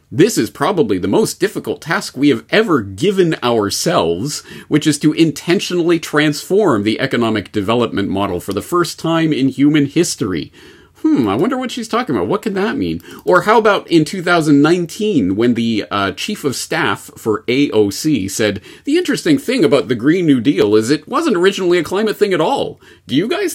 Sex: male